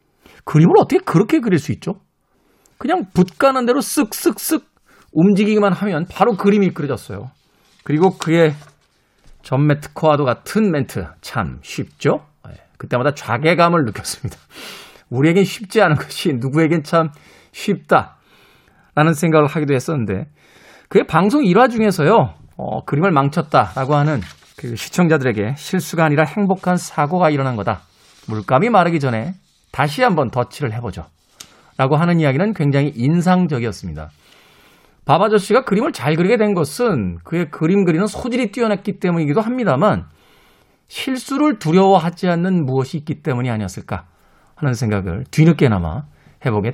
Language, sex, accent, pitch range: Korean, male, native, 130-195 Hz